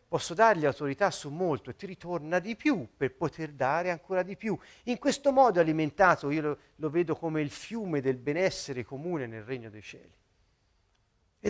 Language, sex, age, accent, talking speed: Italian, male, 50-69, native, 185 wpm